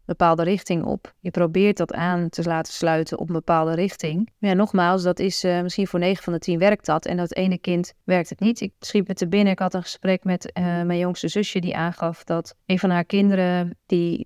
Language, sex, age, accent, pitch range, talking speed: Dutch, female, 30-49, Dutch, 165-190 Hz, 240 wpm